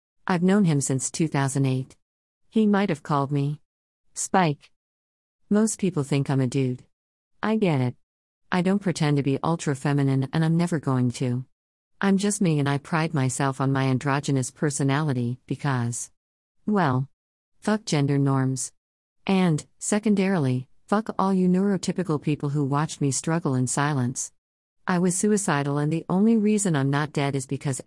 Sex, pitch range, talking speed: female, 130-170 Hz, 155 wpm